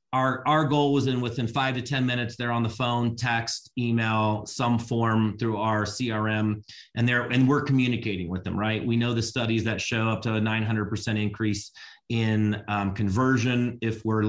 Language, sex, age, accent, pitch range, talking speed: English, male, 30-49, American, 105-125 Hz, 190 wpm